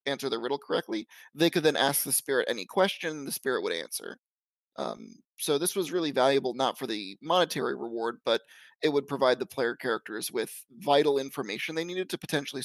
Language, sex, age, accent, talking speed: English, male, 20-39, American, 195 wpm